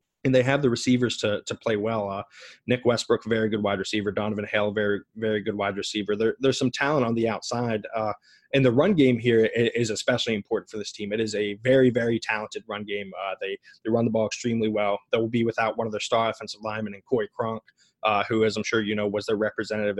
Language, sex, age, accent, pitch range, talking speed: English, male, 20-39, American, 105-120 Hz, 240 wpm